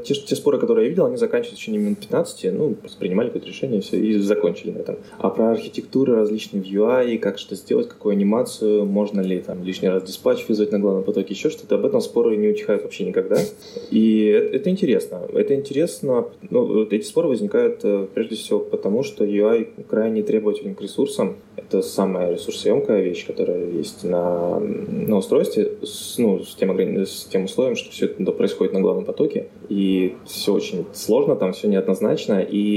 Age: 20-39